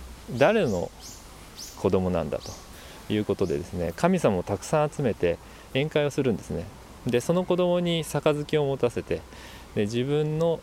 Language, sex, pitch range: Japanese, male, 90-150 Hz